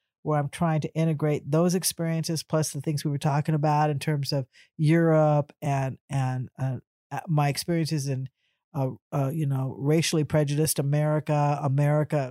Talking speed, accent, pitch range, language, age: 155 wpm, American, 140-160 Hz, English, 50-69